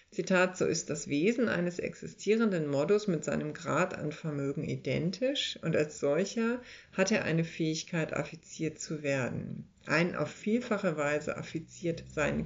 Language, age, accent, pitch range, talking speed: German, 60-79, German, 155-205 Hz, 145 wpm